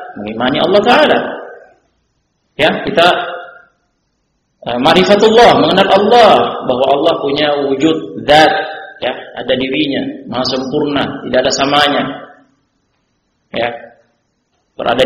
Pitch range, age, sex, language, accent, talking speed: 145-210 Hz, 40-59, male, Indonesian, native, 95 wpm